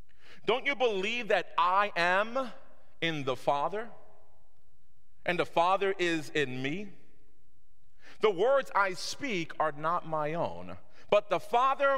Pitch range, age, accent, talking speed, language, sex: 150-220 Hz, 40-59, American, 130 wpm, English, male